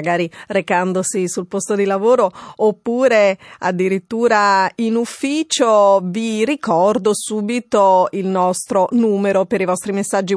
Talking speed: 115 wpm